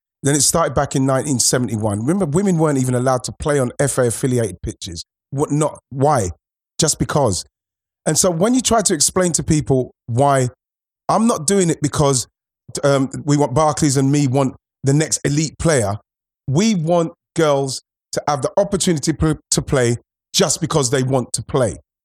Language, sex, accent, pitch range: English, male, British, 135-200 Hz